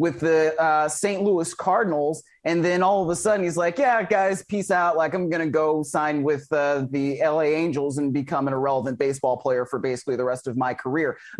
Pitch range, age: 155-195 Hz, 30-49